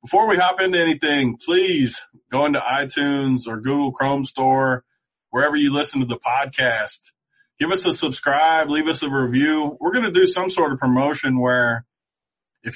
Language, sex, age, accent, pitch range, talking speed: English, male, 20-39, American, 120-145 Hz, 175 wpm